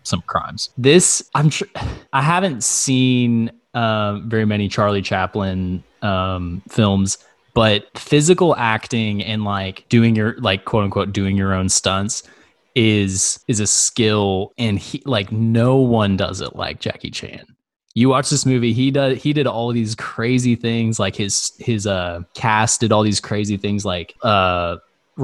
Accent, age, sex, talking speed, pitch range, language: American, 20-39, male, 155 wpm, 100-125 Hz, English